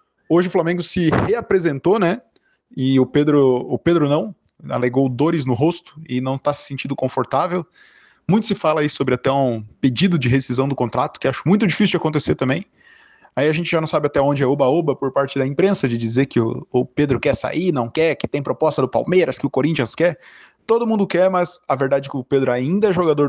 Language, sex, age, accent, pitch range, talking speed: Portuguese, male, 20-39, Brazilian, 130-170 Hz, 225 wpm